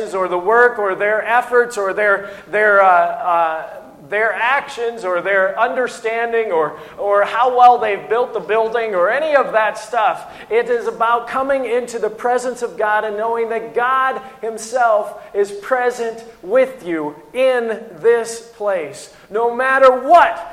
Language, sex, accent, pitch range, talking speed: English, male, American, 205-245 Hz, 155 wpm